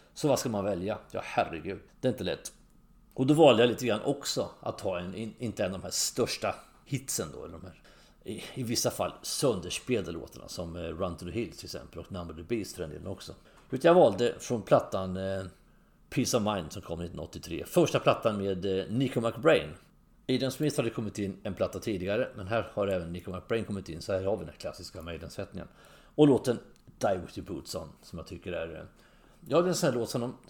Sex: male